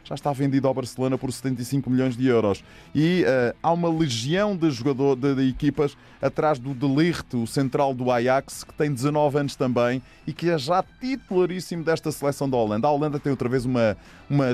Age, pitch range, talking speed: 20-39, 130-155 Hz, 200 wpm